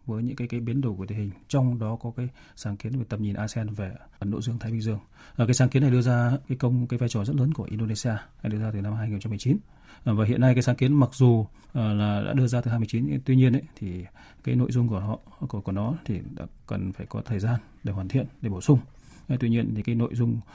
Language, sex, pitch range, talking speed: Vietnamese, male, 110-130 Hz, 270 wpm